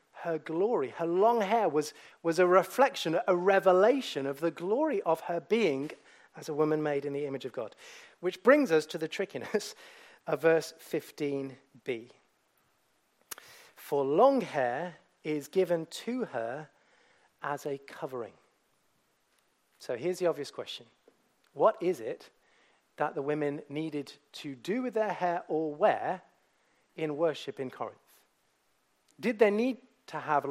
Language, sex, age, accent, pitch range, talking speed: English, male, 40-59, British, 155-230 Hz, 145 wpm